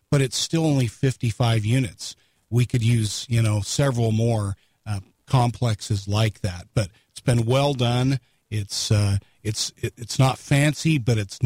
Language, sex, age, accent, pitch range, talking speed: English, male, 40-59, American, 110-130 Hz, 155 wpm